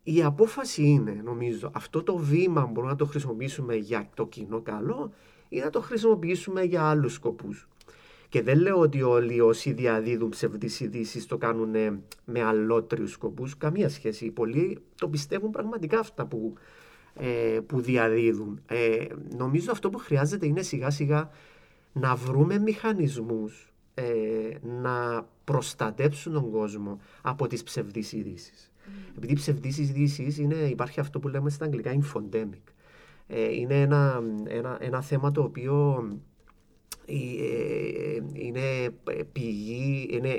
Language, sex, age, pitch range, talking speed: Greek, male, 30-49, 115-145 Hz, 125 wpm